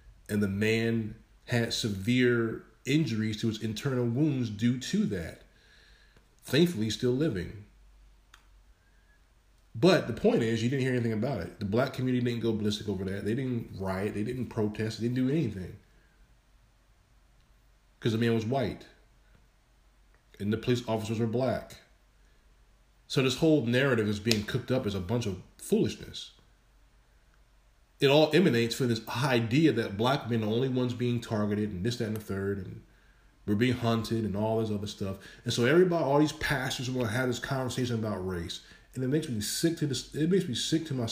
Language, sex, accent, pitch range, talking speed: English, male, American, 105-135 Hz, 180 wpm